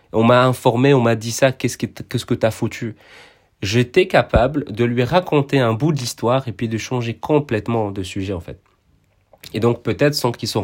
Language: French